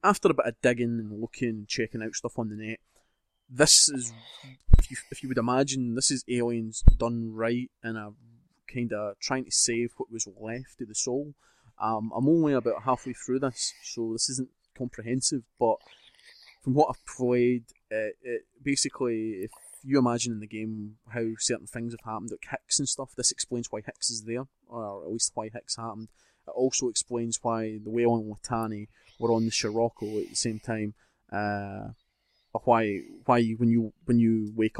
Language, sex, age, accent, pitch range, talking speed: English, male, 20-39, British, 110-125 Hz, 185 wpm